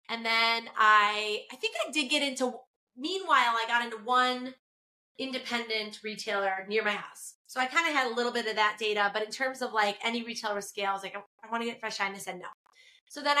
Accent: American